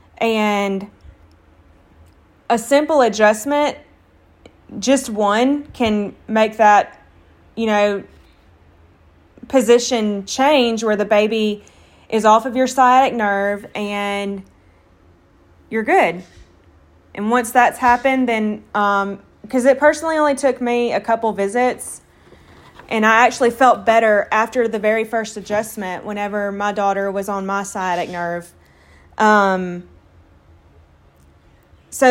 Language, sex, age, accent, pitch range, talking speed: English, female, 20-39, American, 200-240 Hz, 110 wpm